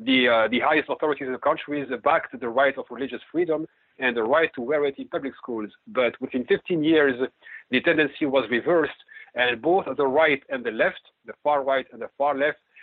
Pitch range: 130-165 Hz